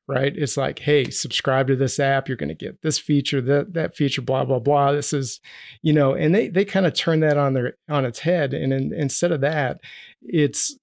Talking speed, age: 235 wpm, 40-59